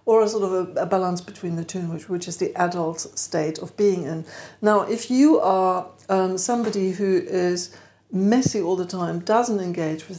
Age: 60-79